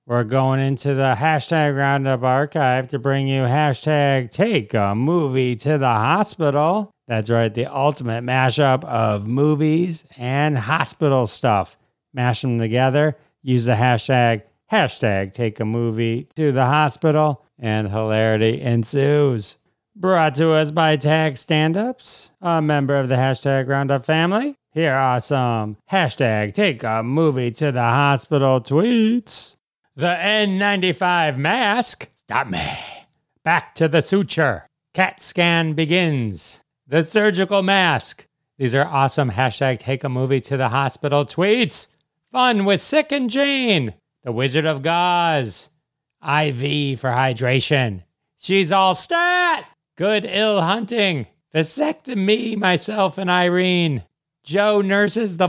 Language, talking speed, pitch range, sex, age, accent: English, 130 wpm, 130-180 Hz, male, 40-59, American